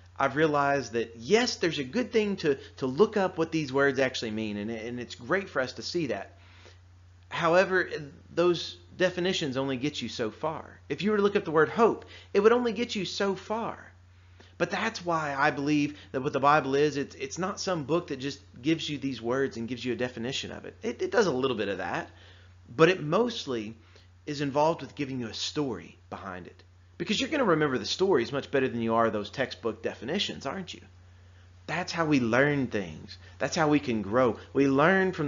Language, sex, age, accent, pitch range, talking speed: English, male, 30-49, American, 105-165 Hz, 220 wpm